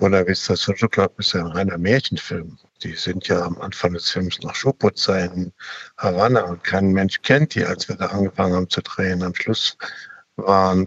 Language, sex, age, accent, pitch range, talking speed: German, male, 60-79, German, 90-105 Hz, 200 wpm